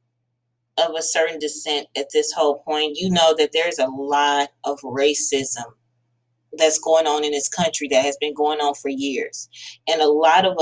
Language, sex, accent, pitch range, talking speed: English, female, American, 120-160 Hz, 185 wpm